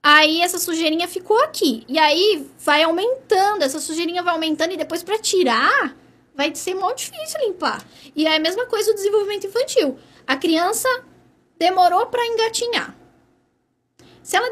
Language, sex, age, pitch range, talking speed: Portuguese, female, 10-29, 265-345 Hz, 155 wpm